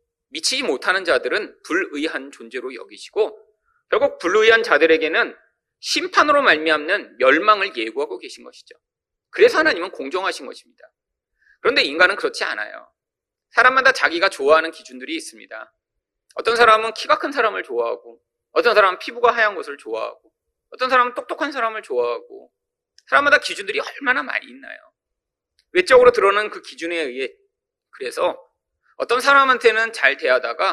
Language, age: Korean, 40-59